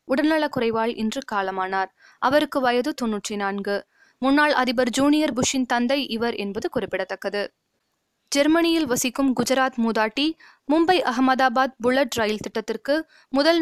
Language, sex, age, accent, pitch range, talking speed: Tamil, female, 20-39, native, 220-280 Hz, 115 wpm